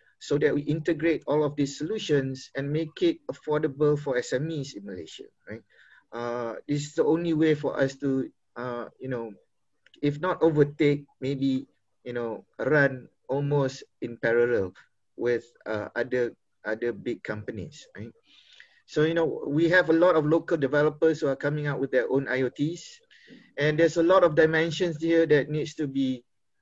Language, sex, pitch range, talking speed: English, male, 120-155 Hz, 170 wpm